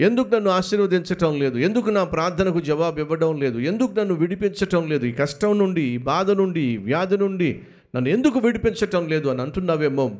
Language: Telugu